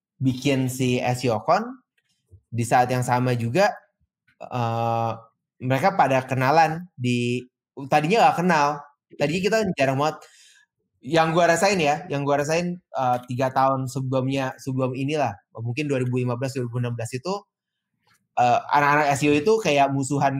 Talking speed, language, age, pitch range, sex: 125 wpm, Indonesian, 20-39, 120-150 Hz, male